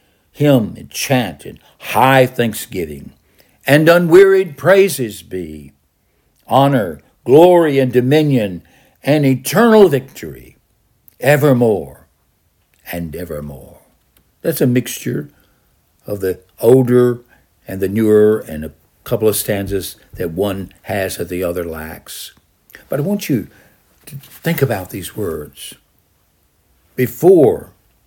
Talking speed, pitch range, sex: 110 wpm, 95-140 Hz, male